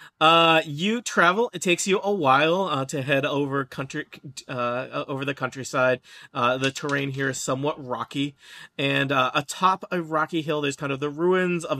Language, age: English, 40-59